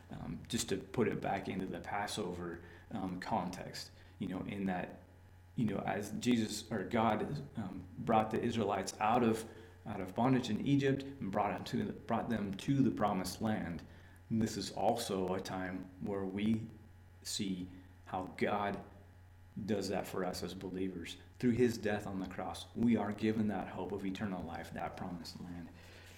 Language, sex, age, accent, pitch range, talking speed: English, male, 30-49, American, 90-115 Hz, 165 wpm